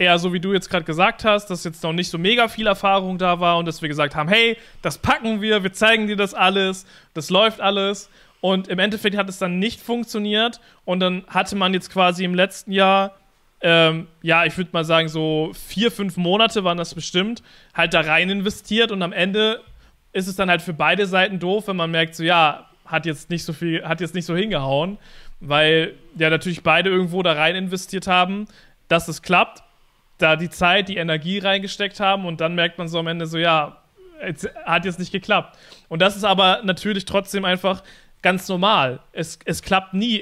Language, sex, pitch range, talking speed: German, male, 165-195 Hz, 210 wpm